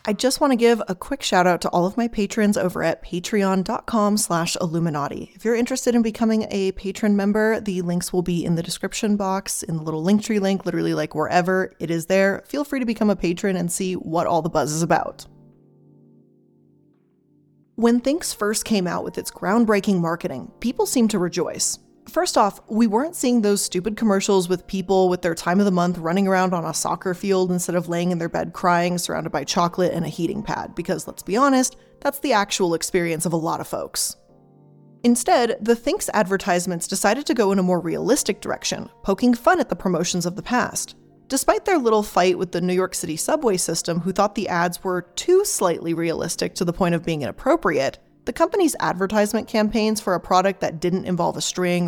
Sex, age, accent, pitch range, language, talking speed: female, 20-39, American, 175-220 Hz, English, 205 wpm